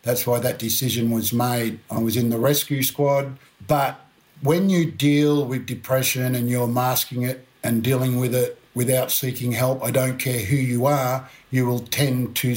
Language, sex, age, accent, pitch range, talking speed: English, male, 50-69, Australian, 125-140 Hz, 185 wpm